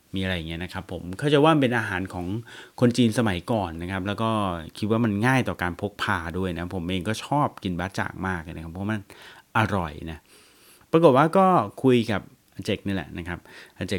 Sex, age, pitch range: male, 30-49, 95-115 Hz